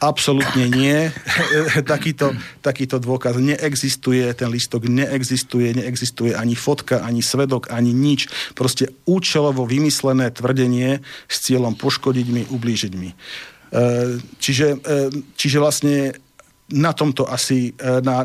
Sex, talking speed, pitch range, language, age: male, 110 wpm, 115-135 Hz, Slovak, 50-69